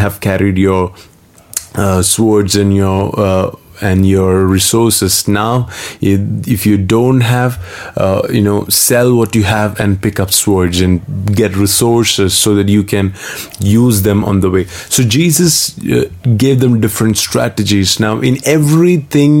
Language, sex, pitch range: English, male, 100-115 Hz